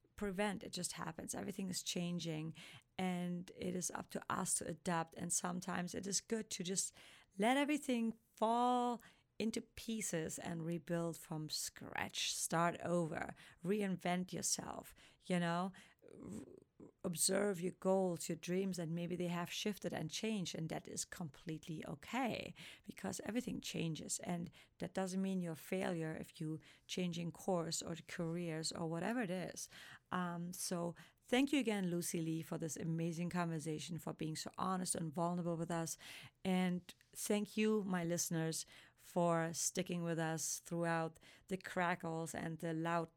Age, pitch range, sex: 30-49, 165-195 Hz, female